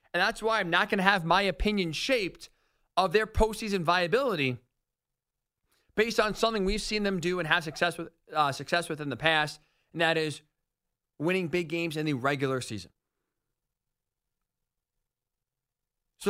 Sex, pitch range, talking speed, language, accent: male, 155-205 Hz, 160 wpm, English, American